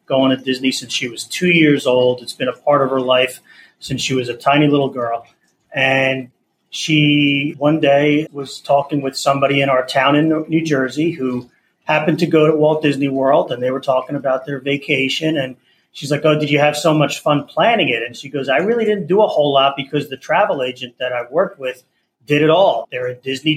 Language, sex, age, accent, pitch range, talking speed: English, male, 30-49, American, 130-160 Hz, 225 wpm